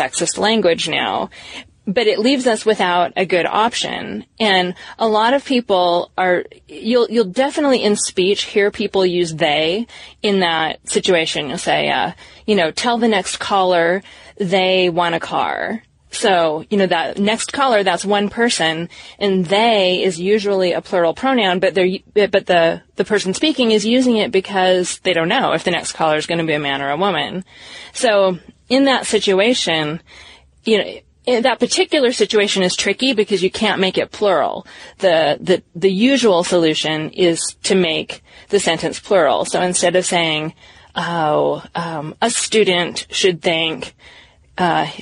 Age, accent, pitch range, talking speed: 20-39, American, 170-215 Hz, 160 wpm